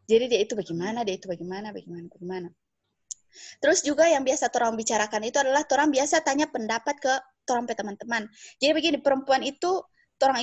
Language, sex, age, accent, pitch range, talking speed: Indonesian, female, 20-39, native, 210-280 Hz, 165 wpm